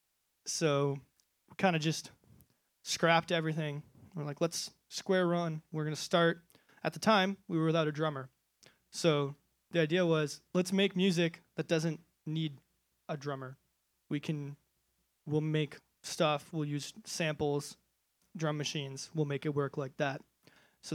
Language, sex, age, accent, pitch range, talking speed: English, male, 20-39, American, 150-175 Hz, 145 wpm